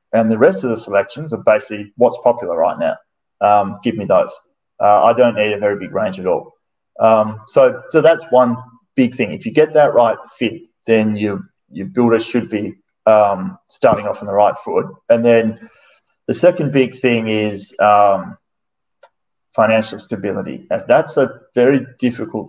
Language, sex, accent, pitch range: English, male, Australian, 105-140 Hz